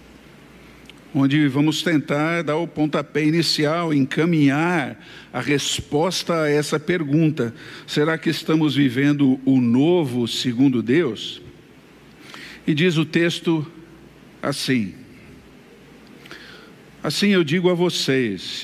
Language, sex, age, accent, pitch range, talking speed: Portuguese, male, 50-69, Brazilian, 140-170 Hz, 100 wpm